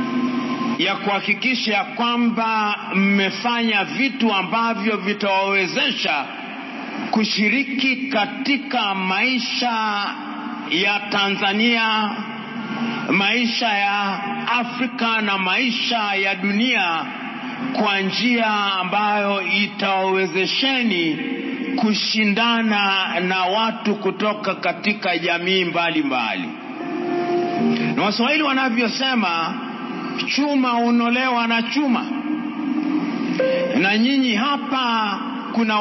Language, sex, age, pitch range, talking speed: English, male, 50-69, 200-250 Hz, 70 wpm